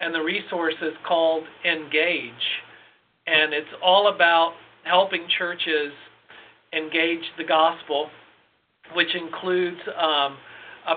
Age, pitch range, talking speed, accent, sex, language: 50-69, 150-175 Hz, 105 wpm, American, male, English